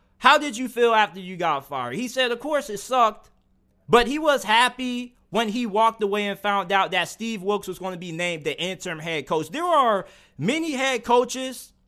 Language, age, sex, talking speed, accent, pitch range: English, 20-39, male, 210 wpm, American, 200-255 Hz